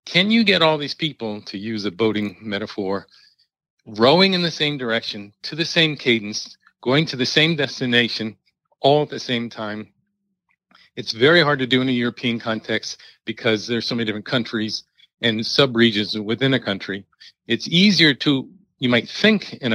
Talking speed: 175 wpm